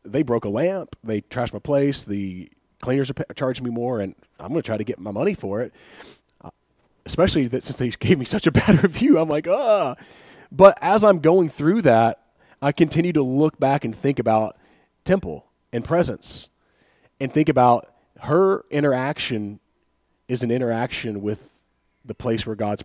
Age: 30-49